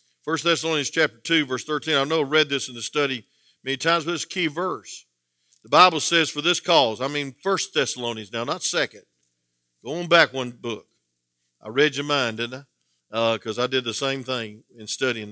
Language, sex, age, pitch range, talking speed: English, male, 50-69, 115-175 Hz, 210 wpm